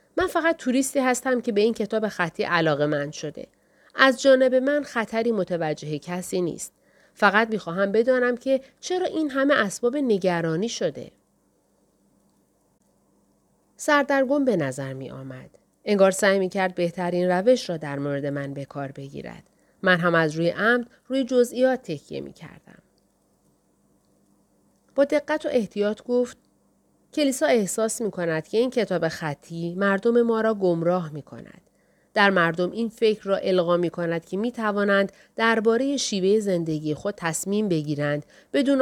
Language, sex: Persian, female